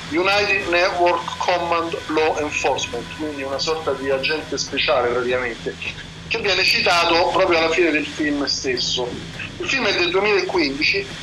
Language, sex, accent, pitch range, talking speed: Italian, male, native, 140-185 Hz, 140 wpm